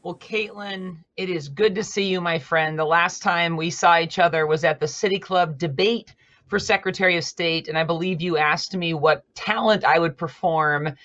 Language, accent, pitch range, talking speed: English, American, 155-185 Hz, 205 wpm